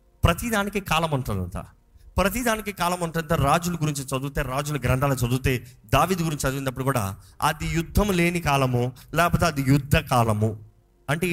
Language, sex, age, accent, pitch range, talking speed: Telugu, male, 30-49, native, 135-195 Hz, 145 wpm